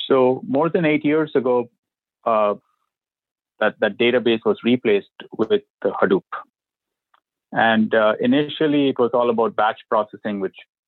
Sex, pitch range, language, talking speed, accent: male, 115-145 Hz, English, 130 wpm, Indian